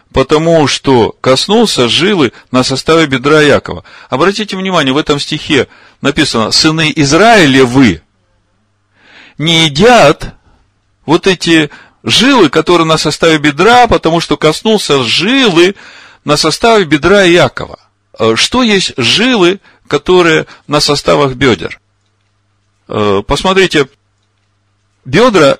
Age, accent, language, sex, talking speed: 40-59, native, Russian, male, 100 wpm